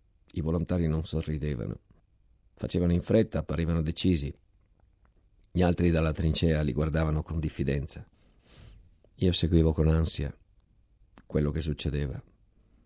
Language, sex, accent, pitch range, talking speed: Italian, male, native, 80-100 Hz, 110 wpm